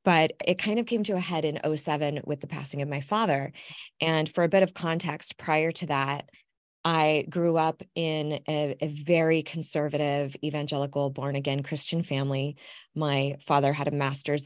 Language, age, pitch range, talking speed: English, 20-39, 145-170 Hz, 175 wpm